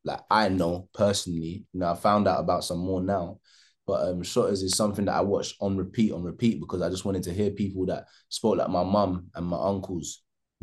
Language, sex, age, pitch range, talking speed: English, male, 20-39, 90-105 Hz, 235 wpm